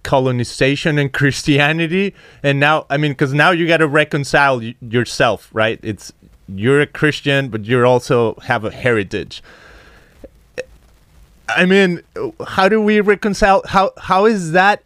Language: English